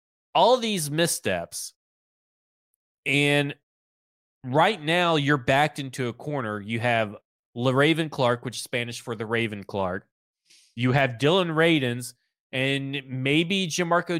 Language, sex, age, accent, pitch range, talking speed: English, male, 30-49, American, 120-165 Hz, 130 wpm